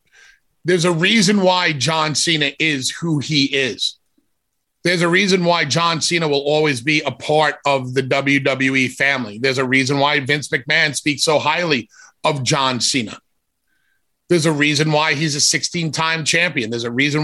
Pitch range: 140-175 Hz